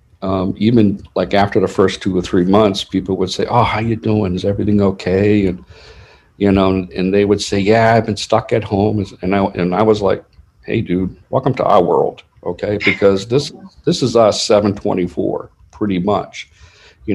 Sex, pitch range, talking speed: male, 90-105 Hz, 190 wpm